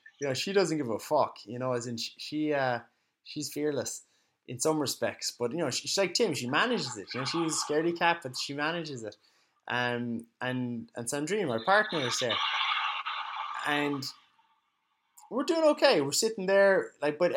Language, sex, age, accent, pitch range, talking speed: English, male, 20-39, Irish, 130-195 Hz, 195 wpm